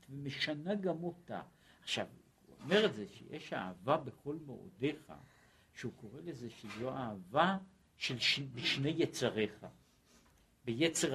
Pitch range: 90-145 Hz